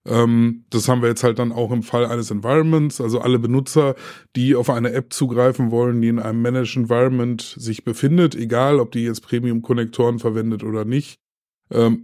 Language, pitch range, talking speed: German, 120-150 Hz, 185 wpm